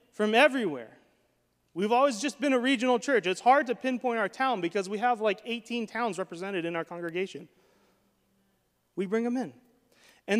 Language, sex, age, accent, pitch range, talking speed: English, male, 30-49, American, 185-235 Hz, 175 wpm